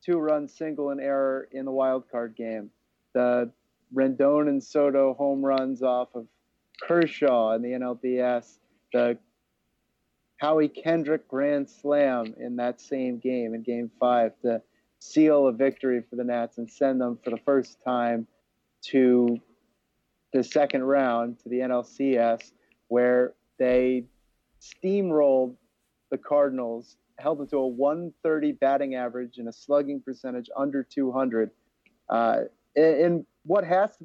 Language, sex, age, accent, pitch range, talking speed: English, male, 30-49, American, 125-145 Hz, 135 wpm